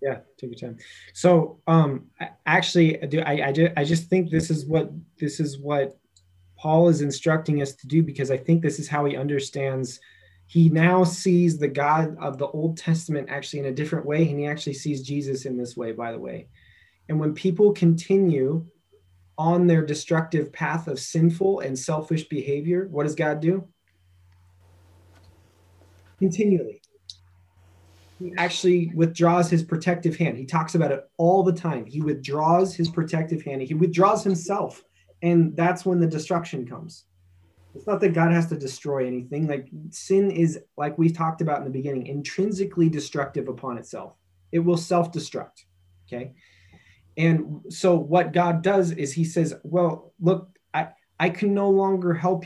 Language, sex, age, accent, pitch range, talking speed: English, male, 20-39, American, 135-170 Hz, 165 wpm